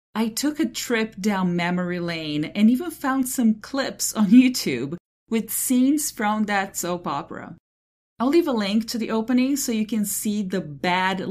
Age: 40-59